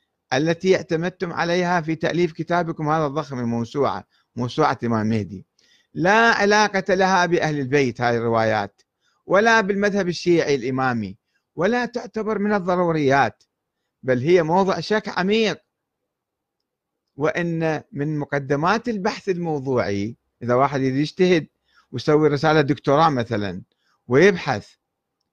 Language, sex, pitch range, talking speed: Arabic, male, 135-195 Hz, 105 wpm